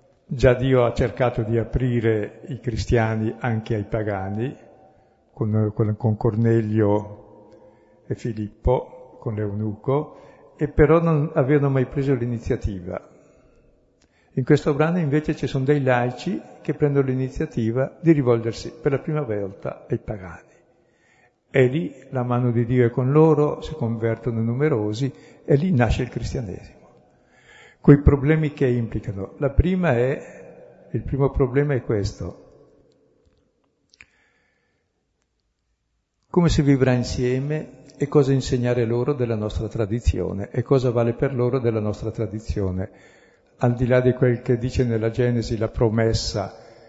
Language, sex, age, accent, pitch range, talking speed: Italian, male, 60-79, native, 115-140 Hz, 130 wpm